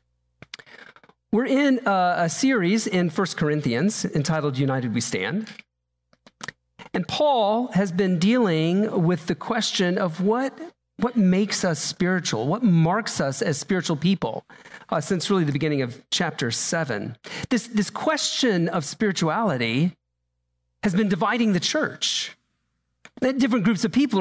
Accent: American